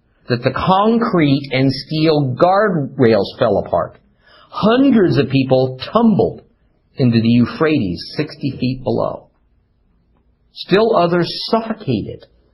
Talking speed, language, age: 100 wpm, English, 50-69